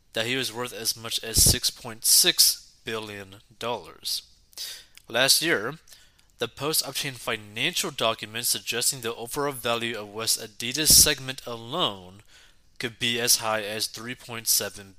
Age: 20-39